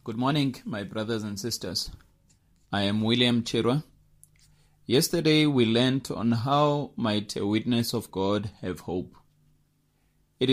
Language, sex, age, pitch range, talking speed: English, male, 30-49, 105-135 Hz, 130 wpm